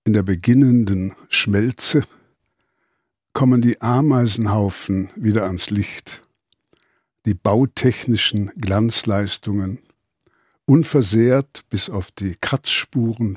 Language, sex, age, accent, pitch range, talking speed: German, male, 60-79, German, 105-130 Hz, 80 wpm